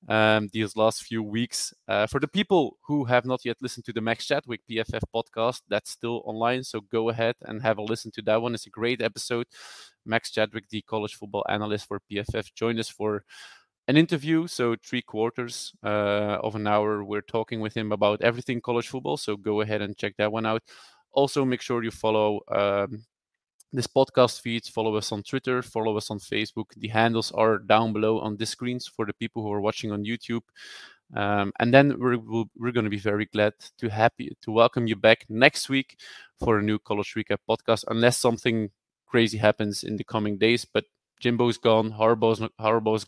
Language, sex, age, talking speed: Dutch, male, 20-39, 200 wpm